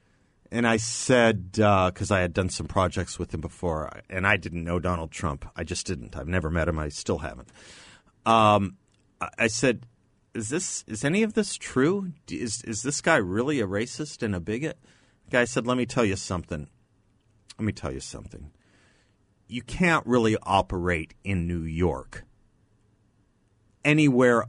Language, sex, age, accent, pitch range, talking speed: English, male, 40-59, American, 90-115 Hz, 170 wpm